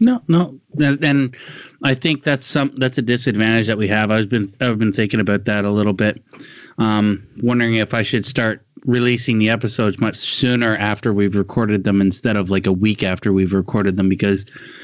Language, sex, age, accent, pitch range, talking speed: English, male, 20-39, American, 100-130 Hz, 200 wpm